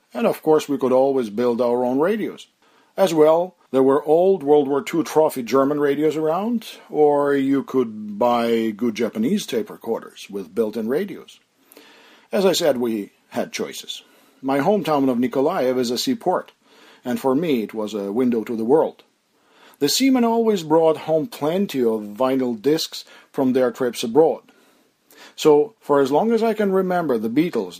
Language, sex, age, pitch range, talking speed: English, male, 50-69, 125-160 Hz, 170 wpm